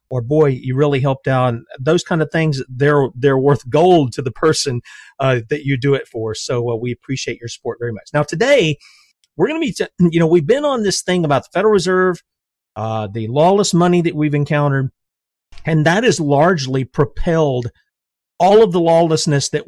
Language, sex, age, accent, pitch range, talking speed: English, male, 40-59, American, 125-170 Hz, 205 wpm